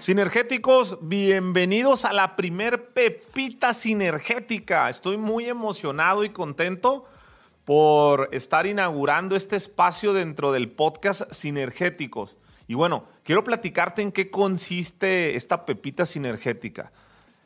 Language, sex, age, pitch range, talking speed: English, male, 40-59, 155-210 Hz, 105 wpm